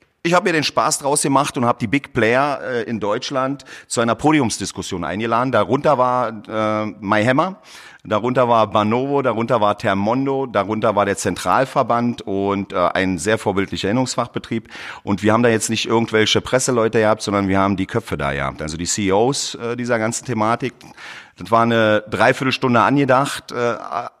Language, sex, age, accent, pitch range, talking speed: German, male, 40-59, German, 100-125 Hz, 170 wpm